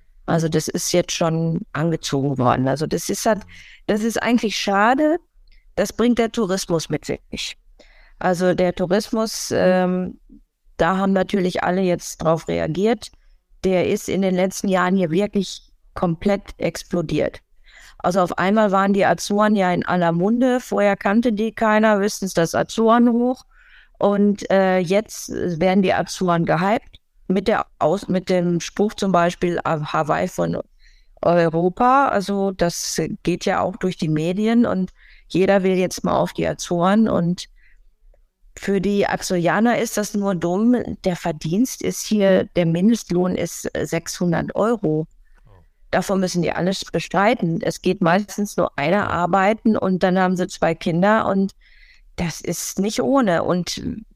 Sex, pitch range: female, 175-210 Hz